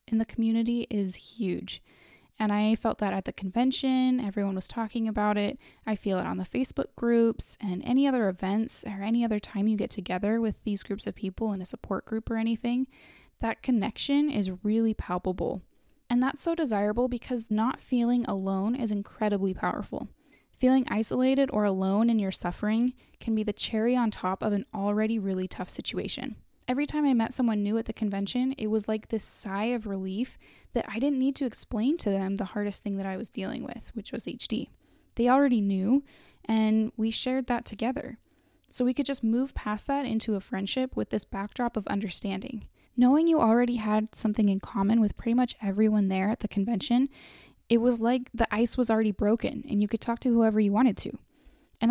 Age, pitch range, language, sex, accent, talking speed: 10-29, 205-245 Hz, English, female, American, 200 wpm